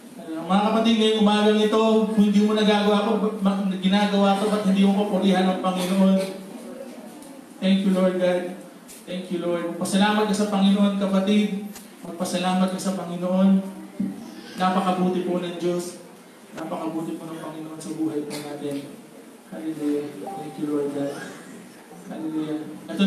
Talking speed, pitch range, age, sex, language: 130 wpm, 165-195 Hz, 20-39, male, Filipino